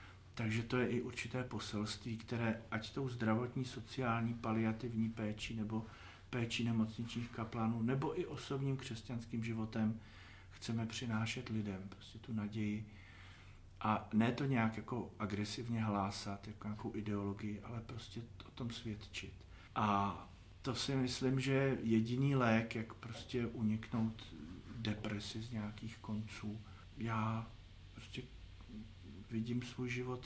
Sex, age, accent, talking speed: male, 50-69, native, 120 wpm